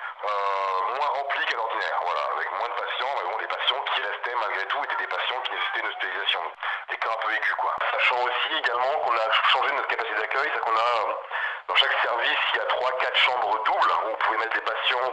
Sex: male